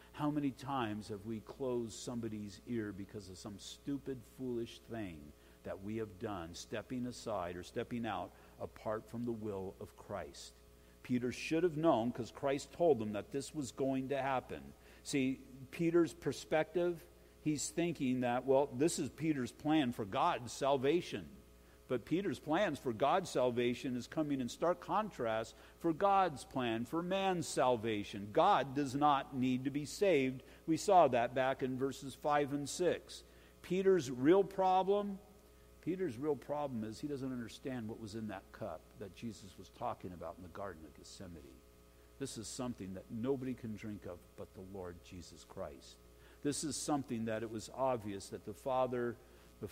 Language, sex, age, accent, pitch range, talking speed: English, male, 50-69, American, 105-140 Hz, 170 wpm